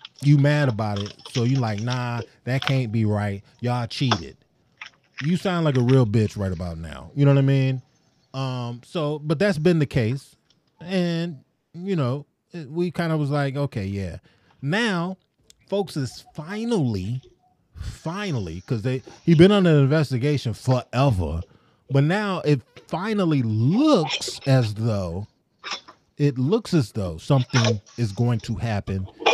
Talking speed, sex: 155 wpm, male